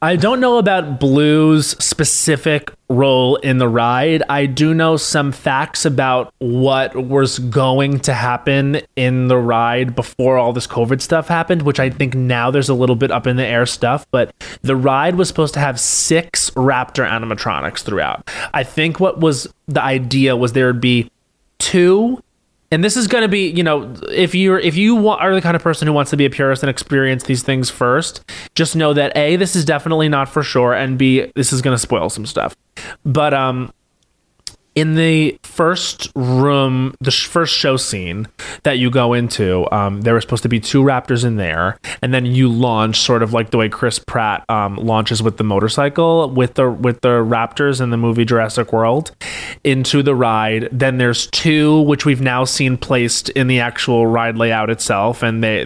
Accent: American